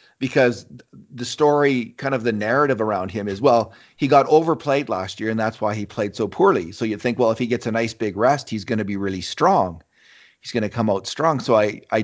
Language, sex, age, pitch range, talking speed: English, male, 40-59, 100-125 Hz, 245 wpm